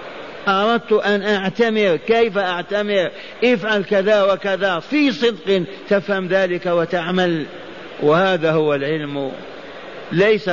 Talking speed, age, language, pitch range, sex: 95 wpm, 50-69, Arabic, 150-200 Hz, male